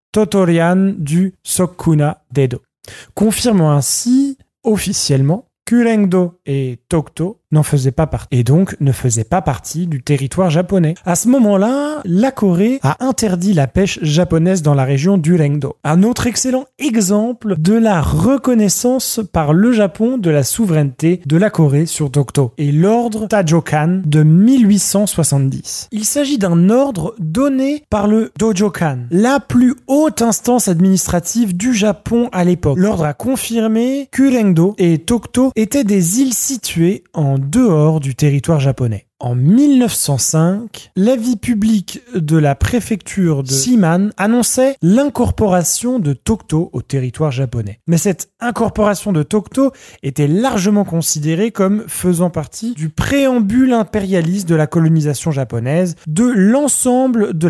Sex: male